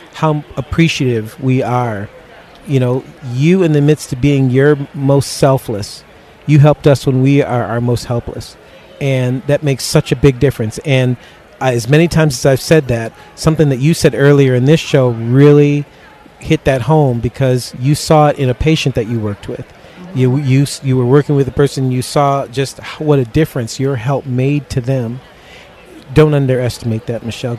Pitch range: 125-150 Hz